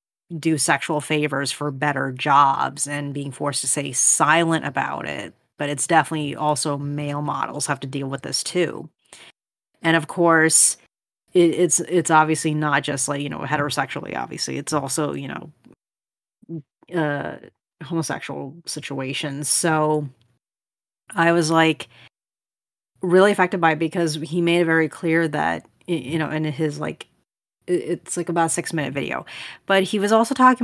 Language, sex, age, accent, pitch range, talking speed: English, female, 30-49, American, 145-165 Hz, 155 wpm